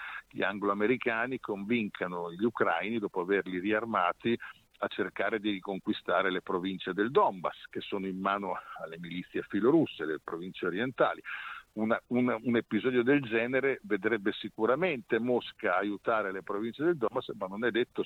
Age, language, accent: 50-69, Italian, native